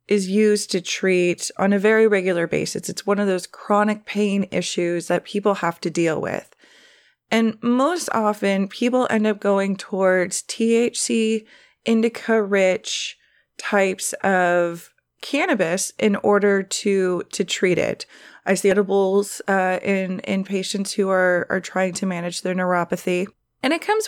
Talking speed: 145 wpm